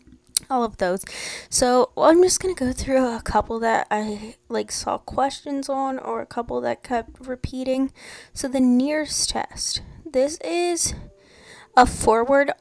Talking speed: 150 wpm